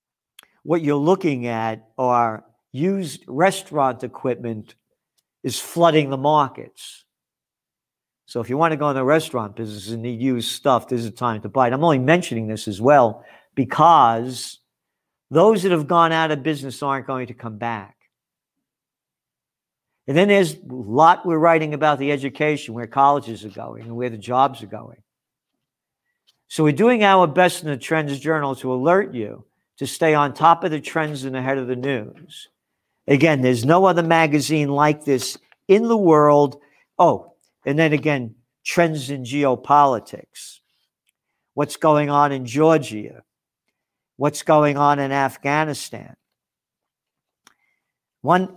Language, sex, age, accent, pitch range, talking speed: English, male, 50-69, American, 125-160 Hz, 150 wpm